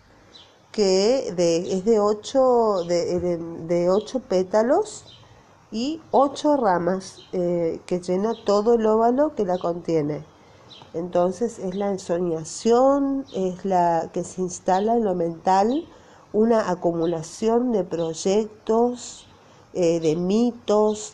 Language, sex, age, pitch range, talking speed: Spanish, female, 40-59, 175-240 Hz, 115 wpm